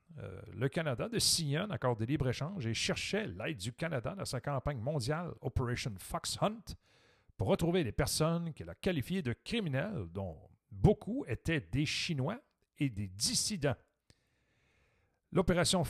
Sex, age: male, 50-69